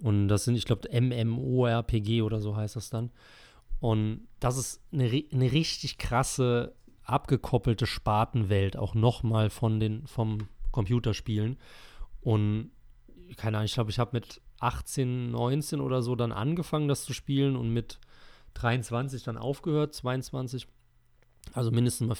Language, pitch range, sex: German, 110-125 Hz, male